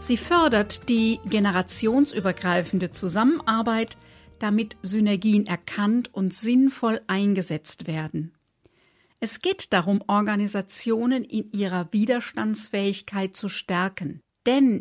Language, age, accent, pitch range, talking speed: German, 50-69, German, 195-250 Hz, 90 wpm